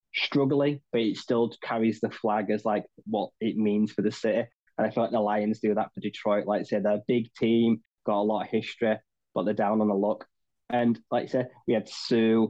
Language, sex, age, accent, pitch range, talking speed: English, male, 10-29, British, 105-115 Hz, 235 wpm